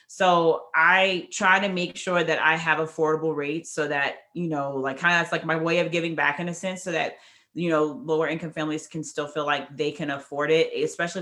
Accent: American